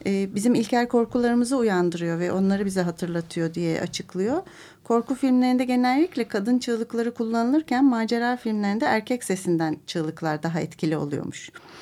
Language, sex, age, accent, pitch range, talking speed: Turkish, female, 40-59, native, 190-245 Hz, 120 wpm